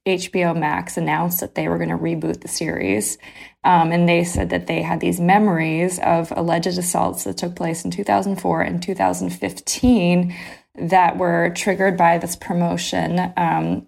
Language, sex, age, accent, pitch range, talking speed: English, female, 20-39, American, 150-180 Hz, 160 wpm